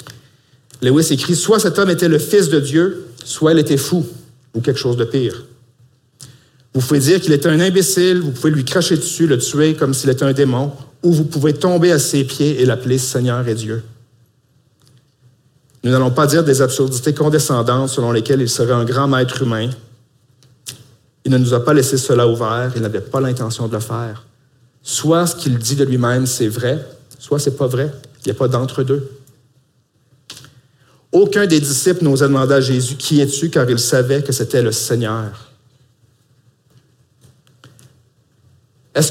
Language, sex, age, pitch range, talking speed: French, male, 50-69, 125-145 Hz, 185 wpm